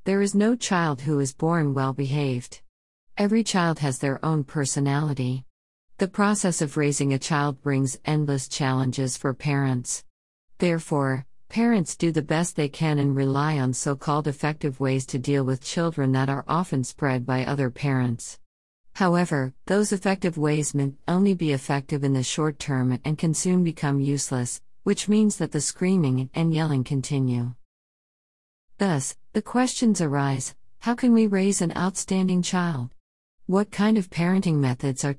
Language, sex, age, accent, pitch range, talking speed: English, female, 50-69, American, 135-170 Hz, 155 wpm